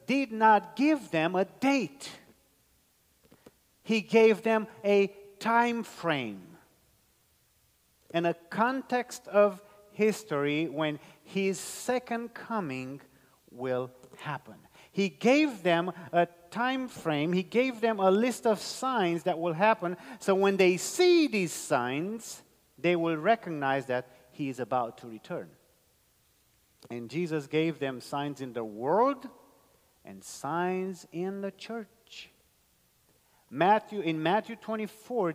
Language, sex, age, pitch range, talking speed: English, male, 40-59, 145-215 Hz, 120 wpm